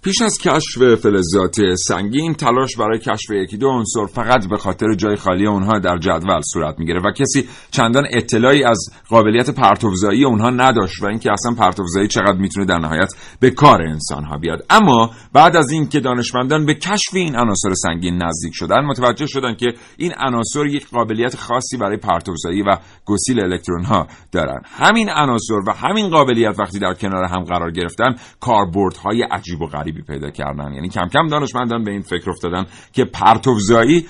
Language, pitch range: Persian, 90-125 Hz